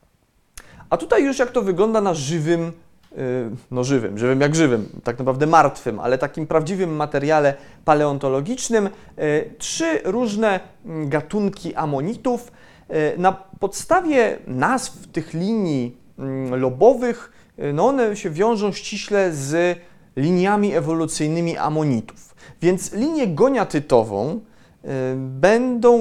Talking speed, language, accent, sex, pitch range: 100 wpm, Polish, native, male, 140-205 Hz